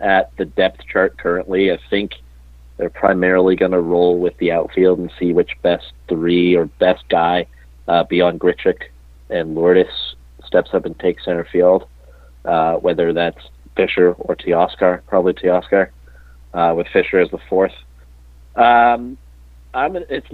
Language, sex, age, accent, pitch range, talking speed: English, male, 40-59, American, 65-105 Hz, 155 wpm